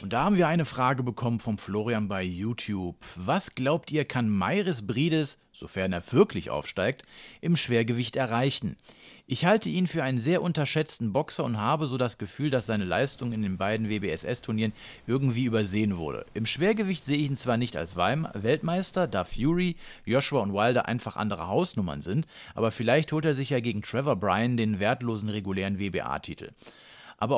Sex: male